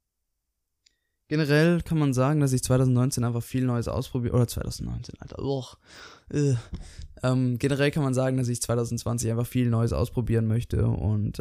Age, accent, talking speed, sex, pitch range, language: 20-39, German, 155 wpm, male, 105-130 Hz, German